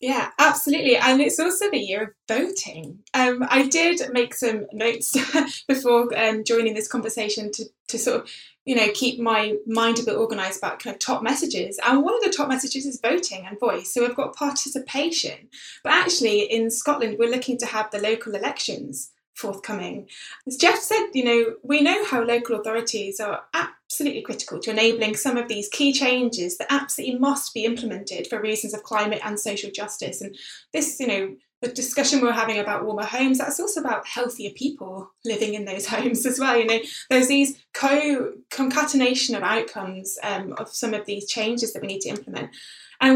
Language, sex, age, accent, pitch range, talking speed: English, female, 10-29, British, 215-270 Hz, 190 wpm